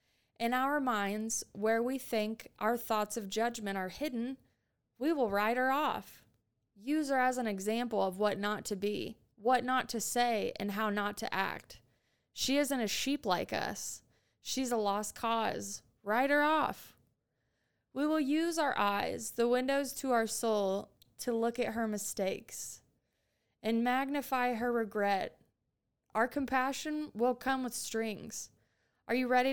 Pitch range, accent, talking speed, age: 205-255 Hz, American, 155 wpm, 20-39